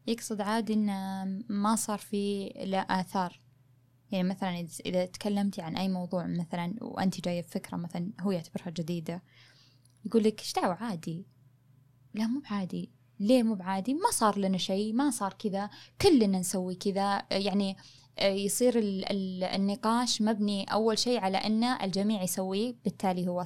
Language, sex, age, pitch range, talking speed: Arabic, female, 10-29, 180-210 Hz, 145 wpm